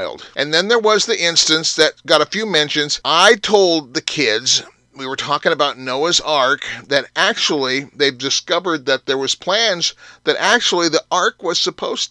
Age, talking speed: 40-59, 175 wpm